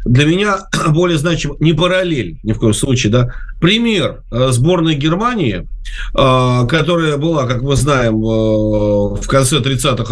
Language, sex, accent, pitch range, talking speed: Russian, male, native, 125-170 Hz, 130 wpm